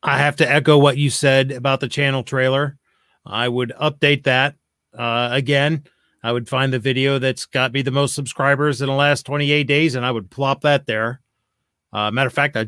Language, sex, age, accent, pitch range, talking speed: English, male, 30-49, American, 130-160 Hz, 210 wpm